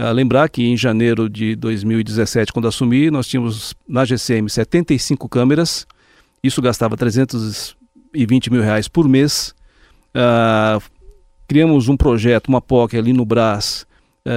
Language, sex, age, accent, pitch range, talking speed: Portuguese, male, 40-59, Brazilian, 120-150 Hz, 135 wpm